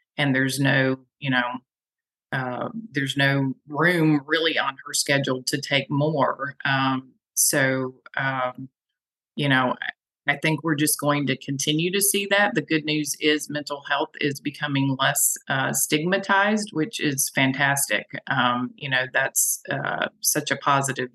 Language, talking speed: English, 150 wpm